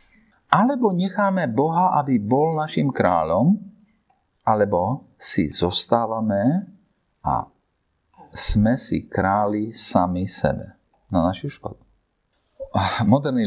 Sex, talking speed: male, 95 wpm